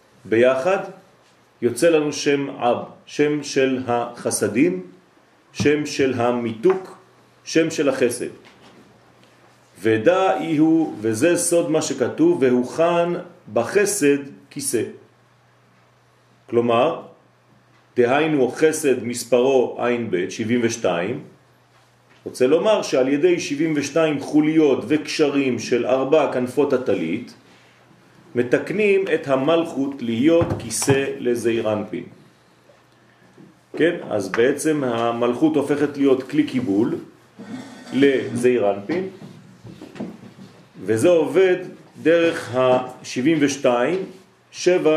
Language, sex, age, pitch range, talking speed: French, male, 40-59, 125-170 Hz, 80 wpm